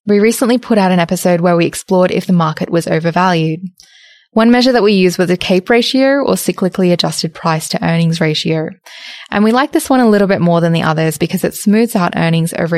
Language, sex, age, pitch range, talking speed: English, female, 10-29, 165-215 Hz, 225 wpm